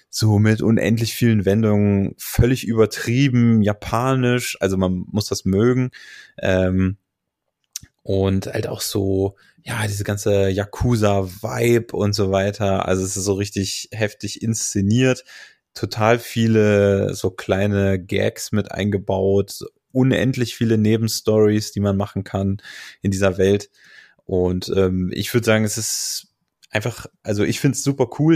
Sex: male